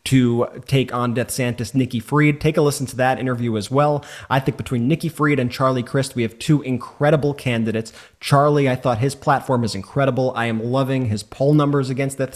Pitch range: 120-150 Hz